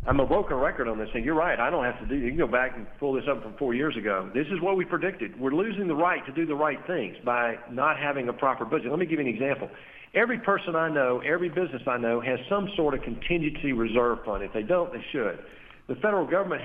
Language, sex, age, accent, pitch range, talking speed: English, male, 50-69, American, 125-165 Hz, 275 wpm